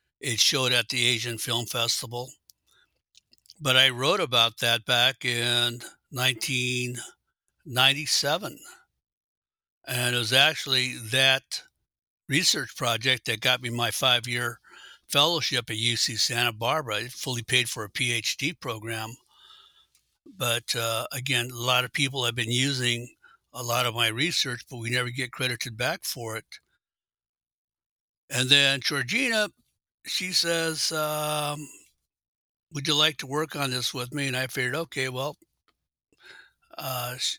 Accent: American